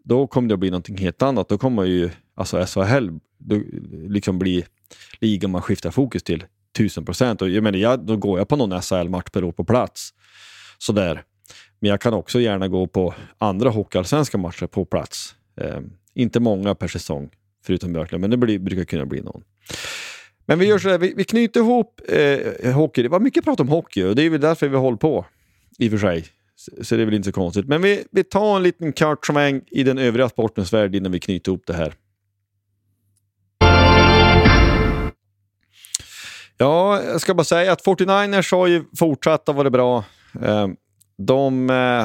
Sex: male